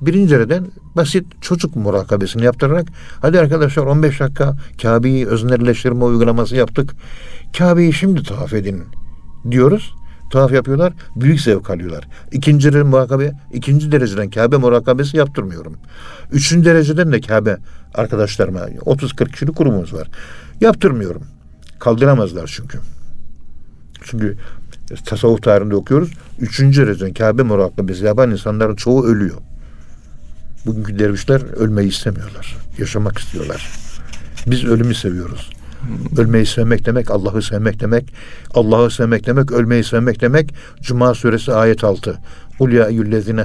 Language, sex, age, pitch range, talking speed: Turkish, male, 60-79, 105-135 Hz, 110 wpm